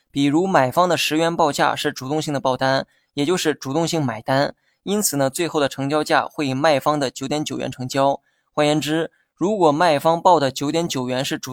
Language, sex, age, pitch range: Chinese, male, 20-39, 135-155 Hz